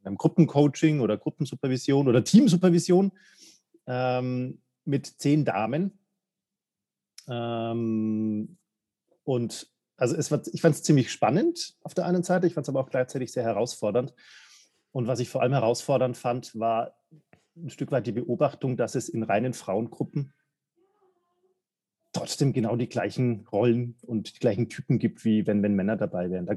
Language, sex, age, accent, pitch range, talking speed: German, male, 40-59, German, 115-165 Hz, 150 wpm